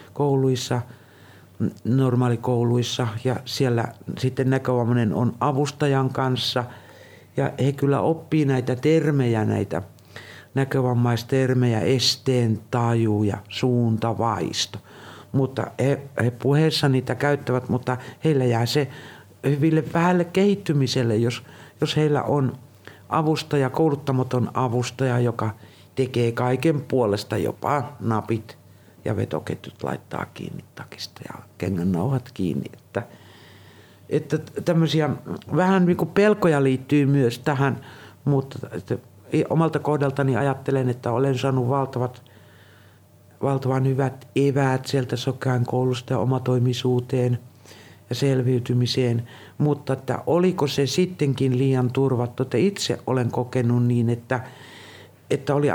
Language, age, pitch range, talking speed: Finnish, 60-79, 115-140 Hz, 105 wpm